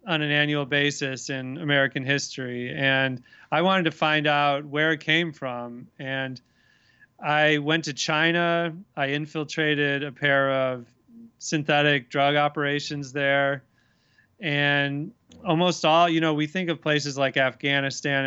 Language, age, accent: English, 30-49, American